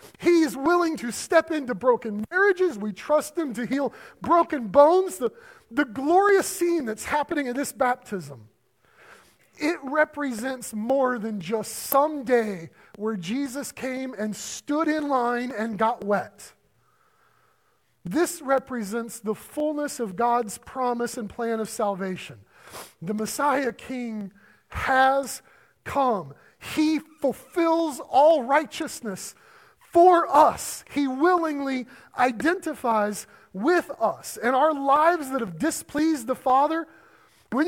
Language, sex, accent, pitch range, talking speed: English, male, American, 215-305 Hz, 125 wpm